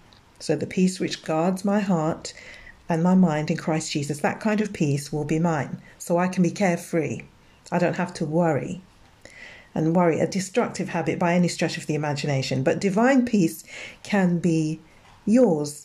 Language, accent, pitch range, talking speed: English, British, 155-185 Hz, 180 wpm